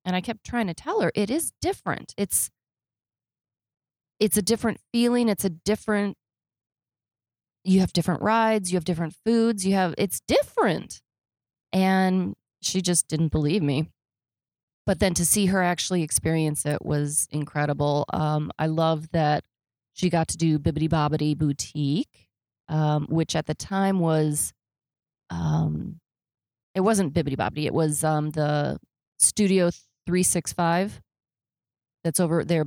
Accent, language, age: American, English, 30-49